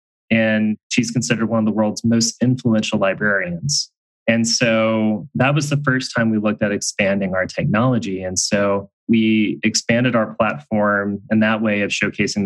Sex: male